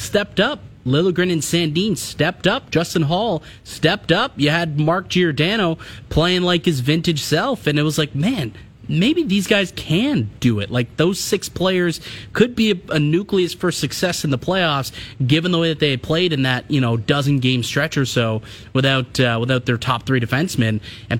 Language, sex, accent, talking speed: English, male, American, 195 wpm